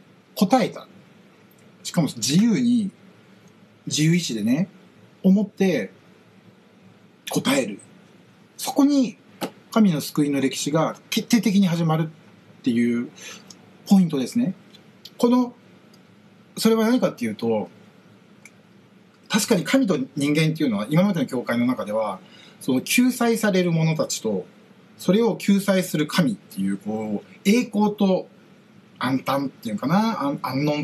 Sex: male